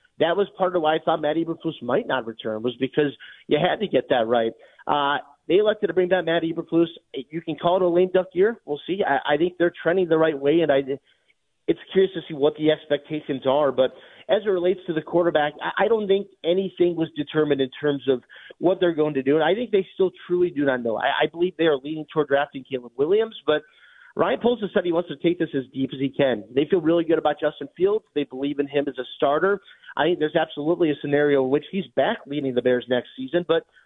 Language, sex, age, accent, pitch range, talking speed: English, male, 30-49, American, 140-180 Hz, 250 wpm